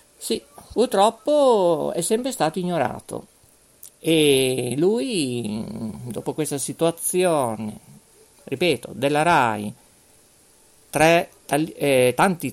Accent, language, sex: native, Italian, male